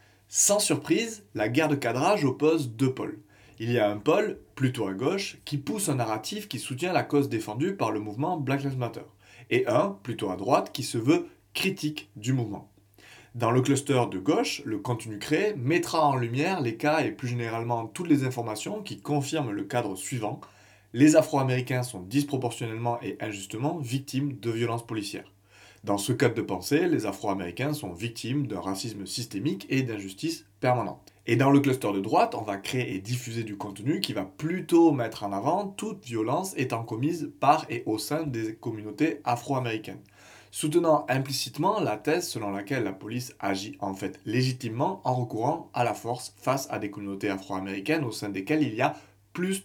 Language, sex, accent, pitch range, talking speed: French, male, French, 105-145 Hz, 180 wpm